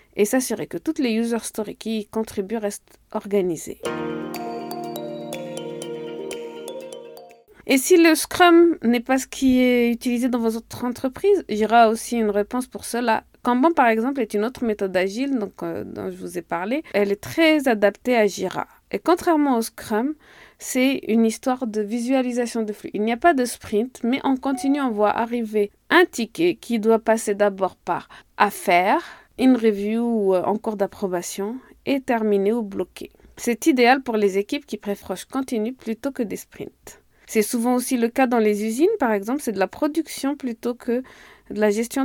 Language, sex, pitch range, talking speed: French, female, 210-265 Hz, 180 wpm